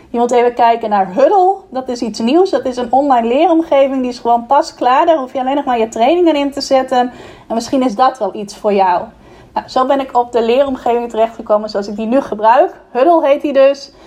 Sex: female